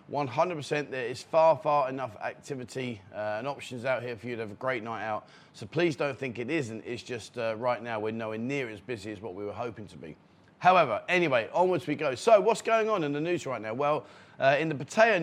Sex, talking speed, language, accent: male, 245 wpm, English, British